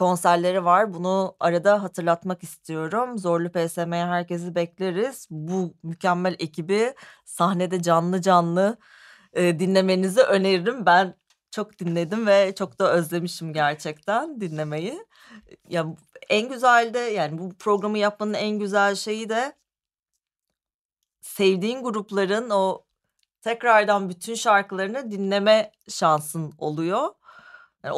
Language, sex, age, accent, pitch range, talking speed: Turkish, female, 30-49, native, 175-215 Hz, 105 wpm